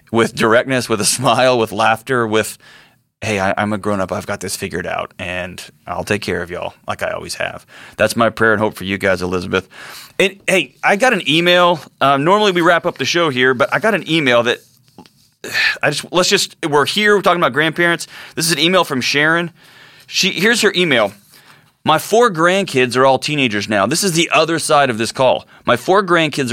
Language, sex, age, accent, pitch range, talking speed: English, male, 30-49, American, 115-170 Hz, 220 wpm